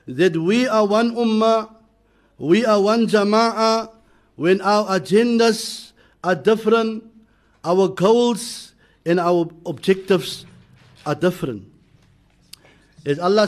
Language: English